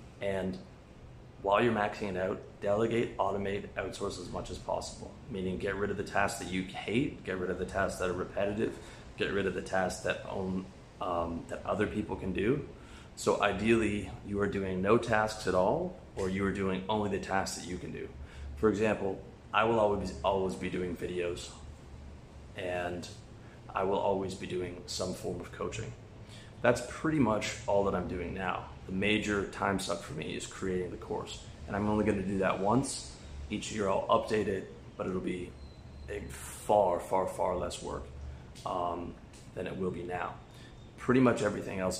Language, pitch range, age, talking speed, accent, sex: English, 85-105 Hz, 30-49, 185 wpm, American, male